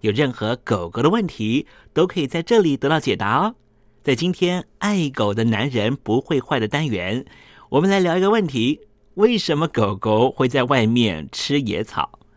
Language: Chinese